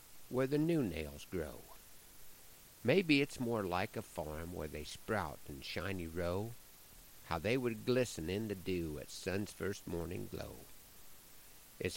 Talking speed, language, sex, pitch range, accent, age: 150 wpm, English, male, 90-120 Hz, American, 60-79